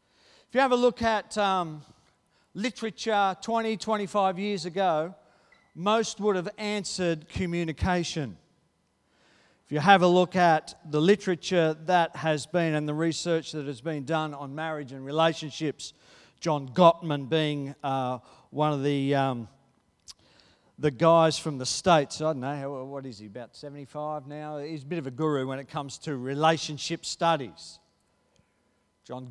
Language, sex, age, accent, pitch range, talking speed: English, male, 50-69, Australian, 140-180 Hz, 150 wpm